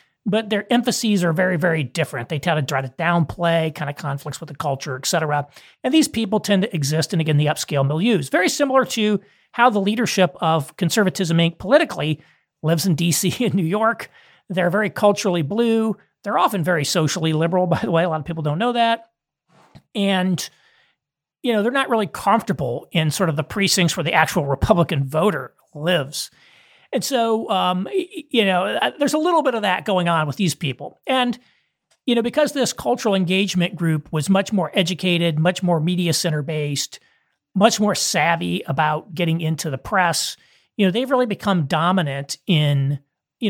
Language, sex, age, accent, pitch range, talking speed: English, male, 40-59, American, 155-210 Hz, 185 wpm